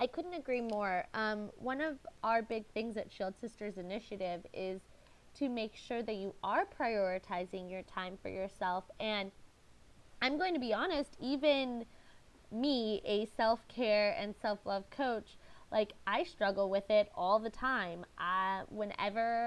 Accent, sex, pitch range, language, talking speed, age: American, female, 200-245 Hz, English, 150 wpm, 20-39